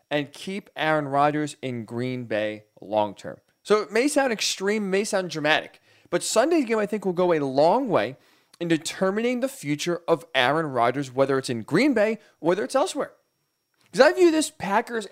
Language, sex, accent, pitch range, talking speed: English, male, American, 145-200 Hz, 190 wpm